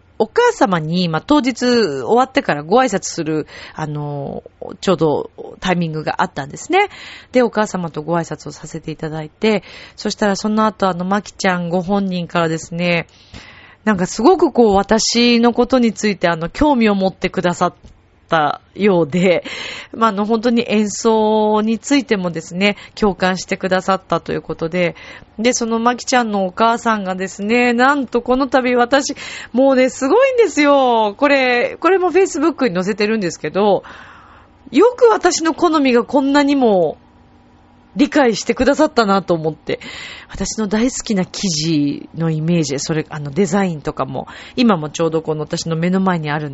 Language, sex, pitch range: Japanese, female, 170-250 Hz